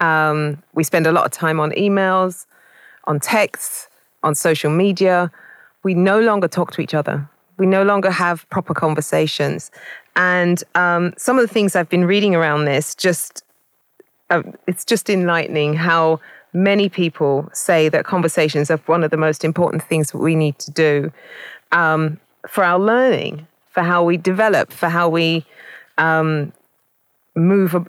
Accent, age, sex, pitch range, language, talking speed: British, 30-49, female, 155-185 Hz, English, 160 wpm